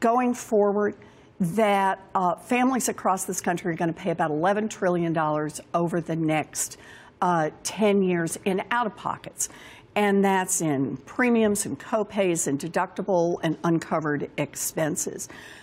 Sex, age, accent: female, 60-79, American